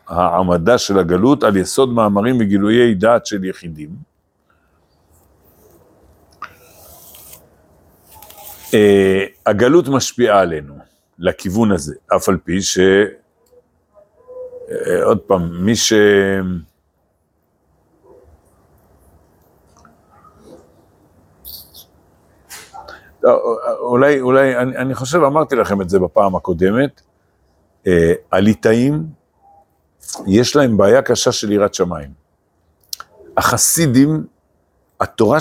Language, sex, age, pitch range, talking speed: Hebrew, male, 60-79, 85-125 Hz, 75 wpm